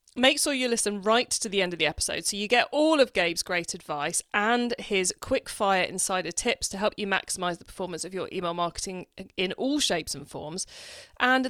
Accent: British